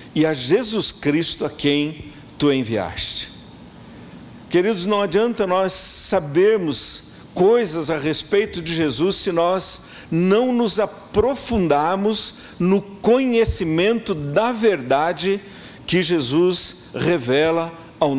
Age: 50-69